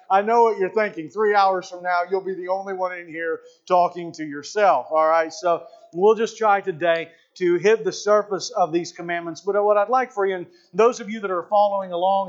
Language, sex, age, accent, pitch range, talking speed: English, male, 40-59, American, 175-210 Hz, 230 wpm